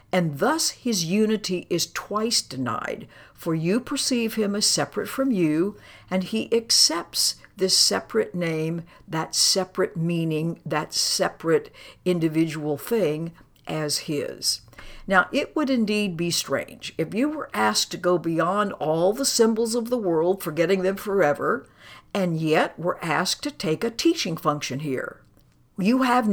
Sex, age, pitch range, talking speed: female, 60-79, 155-215 Hz, 145 wpm